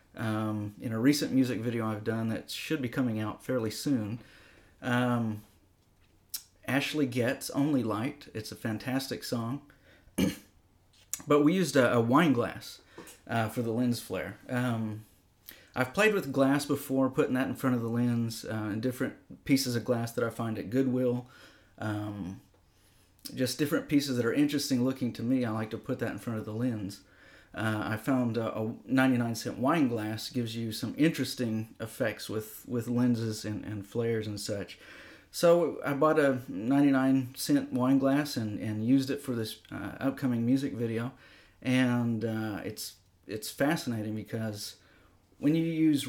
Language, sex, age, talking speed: English, male, 30-49, 170 wpm